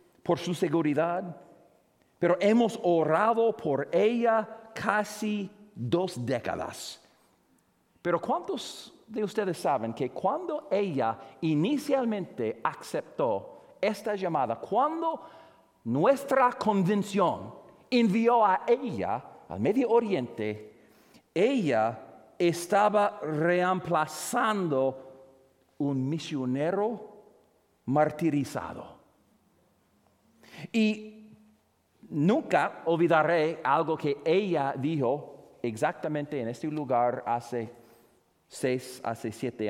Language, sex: English, male